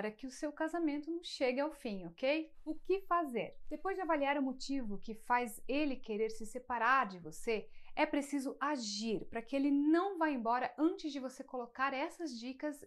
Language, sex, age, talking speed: Portuguese, female, 30-49, 185 wpm